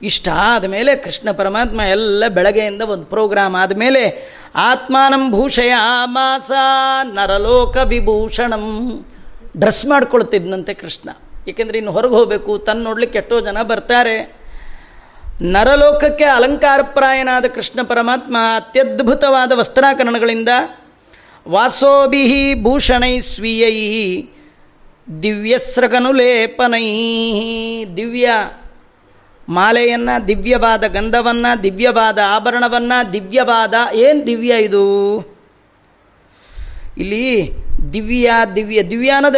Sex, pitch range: female, 205-250 Hz